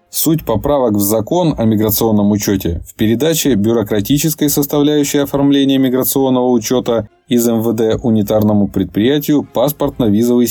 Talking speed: 110 wpm